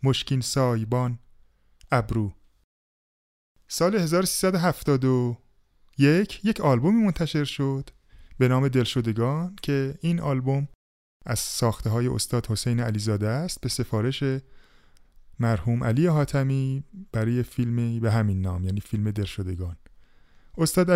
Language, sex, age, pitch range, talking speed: Persian, male, 20-39, 105-140 Hz, 105 wpm